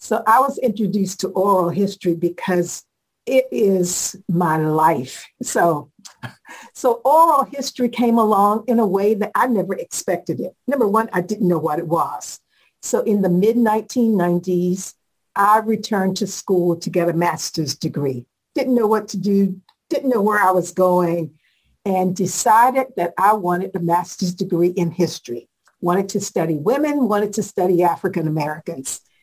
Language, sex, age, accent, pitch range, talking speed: English, female, 60-79, American, 175-225 Hz, 155 wpm